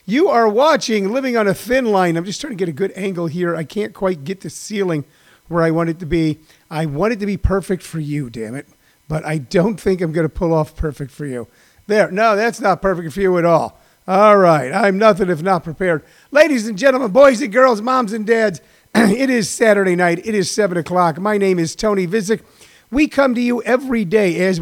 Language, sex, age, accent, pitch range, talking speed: English, male, 50-69, American, 170-215 Hz, 235 wpm